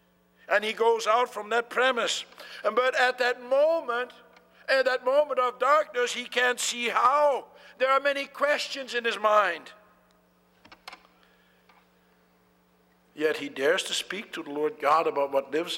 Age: 60-79